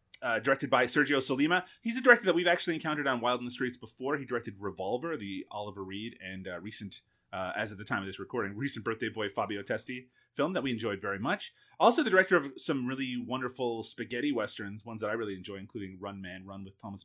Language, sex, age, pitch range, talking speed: English, male, 30-49, 105-135 Hz, 230 wpm